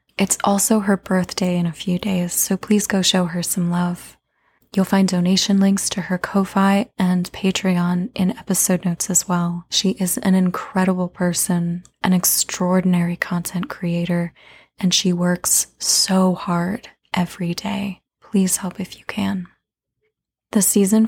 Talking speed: 150 wpm